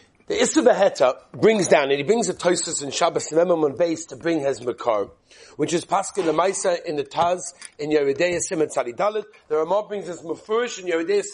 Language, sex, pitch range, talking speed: English, male, 185-280 Hz, 170 wpm